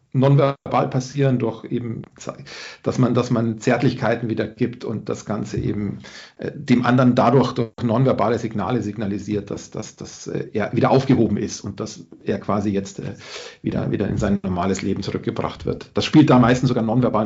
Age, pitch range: 40-59, 110-135 Hz